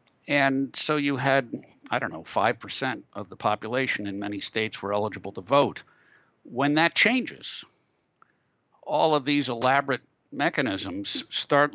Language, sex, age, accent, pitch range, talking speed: English, male, 60-79, American, 110-140 Hz, 140 wpm